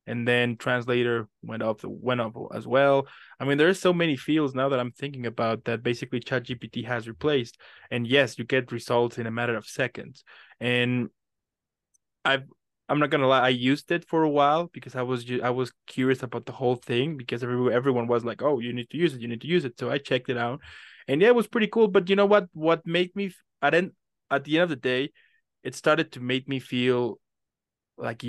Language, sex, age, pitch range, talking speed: English, male, 20-39, 125-145 Hz, 225 wpm